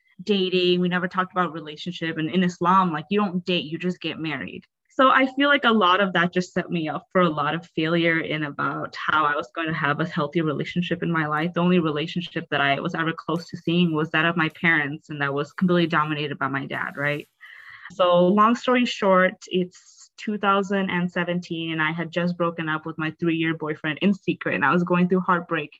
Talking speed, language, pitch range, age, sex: 225 wpm, English, 165-190 Hz, 20-39, female